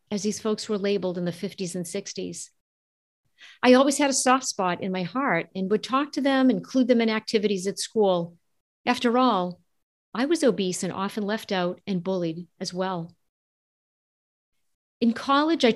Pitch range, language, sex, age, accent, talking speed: 180-245 Hz, English, female, 50-69, American, 175 wpm